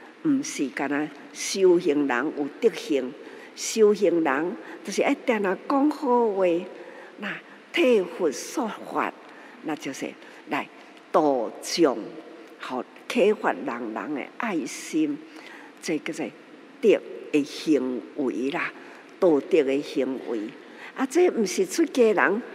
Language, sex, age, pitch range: Chinese, female, 50-69, 205-335 Hz